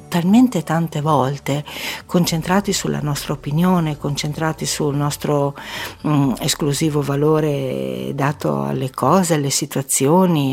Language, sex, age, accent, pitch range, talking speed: Italian, female, 60-79, native, 135-160 Hz, 105 wpm